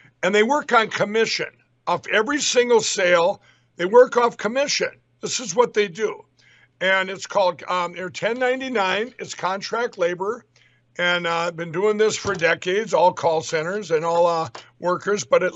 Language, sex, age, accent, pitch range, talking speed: English, male, 60-79, American, 170-215 Hz, 165 wpm